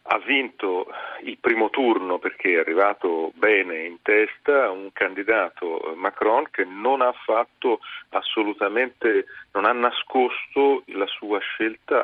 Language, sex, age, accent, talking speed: Italian, male, 40-59, native, 125 wpm